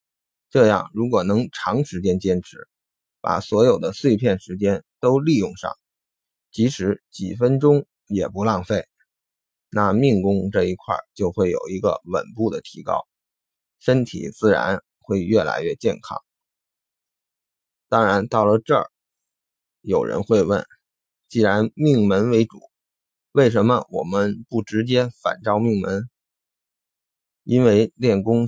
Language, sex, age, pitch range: Chinese, male, 20-39, 100-145 Hz